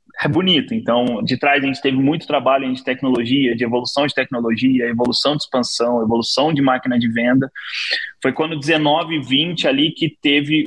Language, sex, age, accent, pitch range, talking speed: Portuguese, male, 20-39, Brazilian, 135-180 Hz, 175 wpm